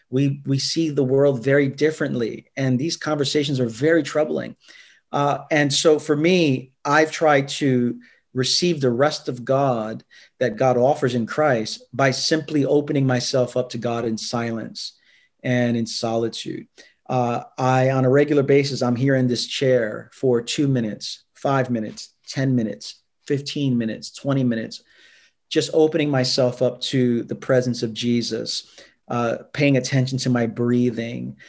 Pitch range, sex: 120-145 Hz, male